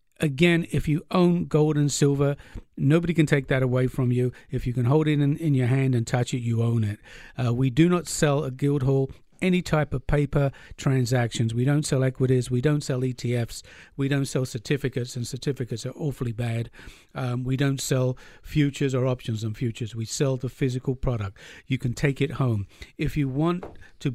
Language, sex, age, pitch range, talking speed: English, male, 50-69, 125-145 Hz, 205 wpm